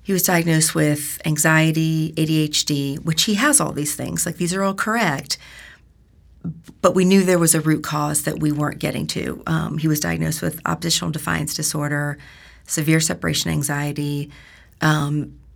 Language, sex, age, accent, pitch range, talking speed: English, female, 40-59, American, 145-160 Hz, 160 wpm